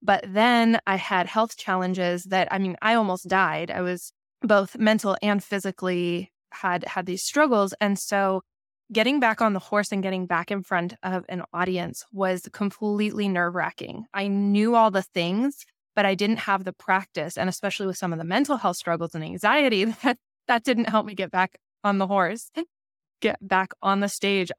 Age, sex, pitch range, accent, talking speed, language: 20-39, female, 185-225 Hz, American, 190 wpm, English